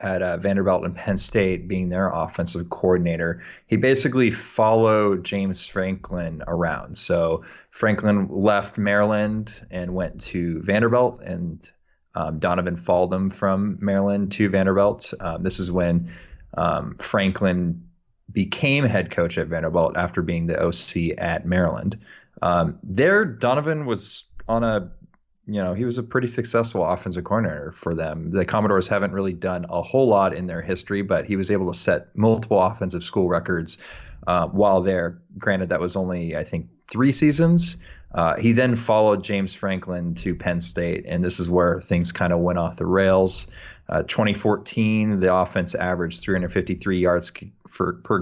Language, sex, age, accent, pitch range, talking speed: English, male, 20-39, American, 90-105 Hz, 160 wpm